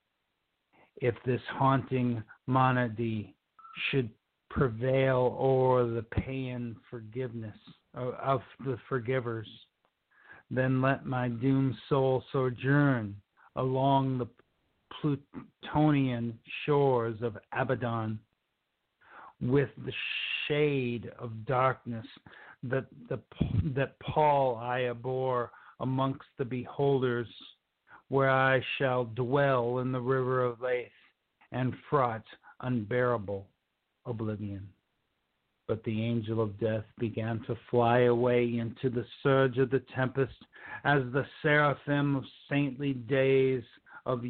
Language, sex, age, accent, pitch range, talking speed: English, male, 50-69, American, 120-135 Hz, 100 wpm